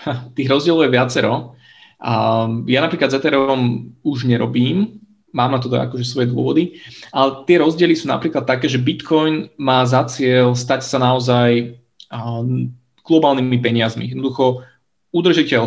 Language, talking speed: Slovak, 135 wpm